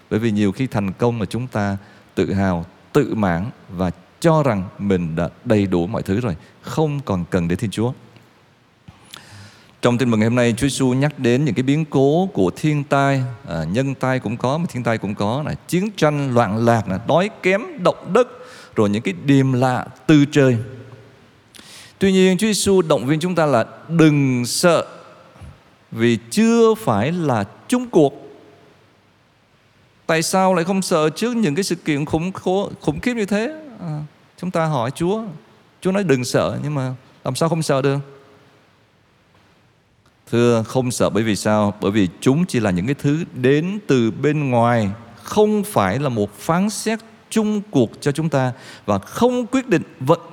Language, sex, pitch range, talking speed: Vietnamese, male, 115-160 Hz, 185 wpm